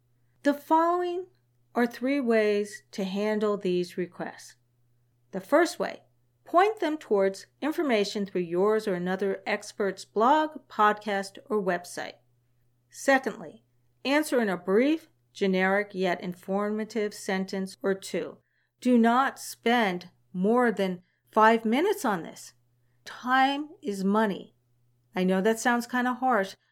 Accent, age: American, 50-69